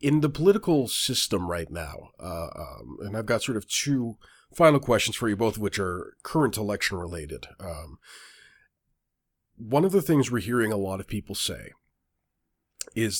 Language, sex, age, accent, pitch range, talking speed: English, male, 40-59, American, 95-120 Hz, 175 wpm